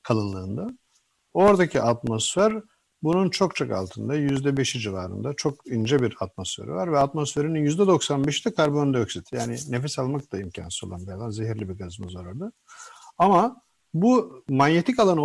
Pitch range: 115-180 Hz